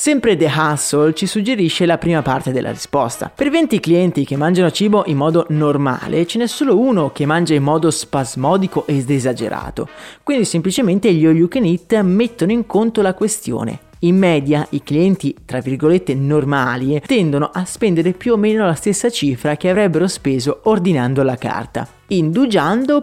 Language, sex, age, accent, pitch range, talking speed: Italian, male, 30-49, native, 150-210 Hz, 160 wpm